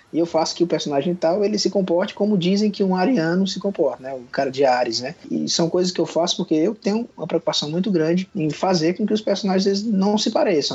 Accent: Brazilian